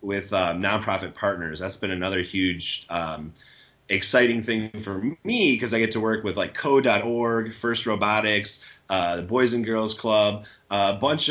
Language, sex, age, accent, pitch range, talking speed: English, male, 30-49, American, 95-115 Hz, 170 wpm